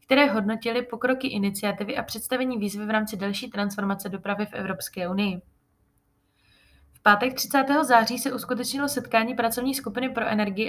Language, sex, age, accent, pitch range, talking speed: Czech, female, 20-39, native, 200-240 Hz, 145 wpm